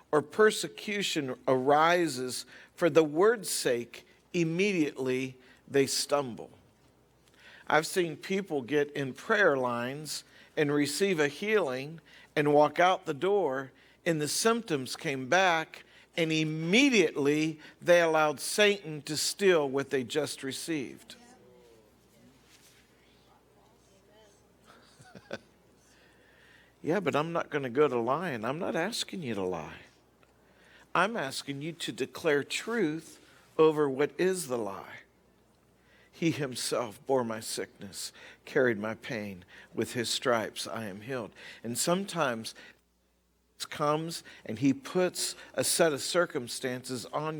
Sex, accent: male, American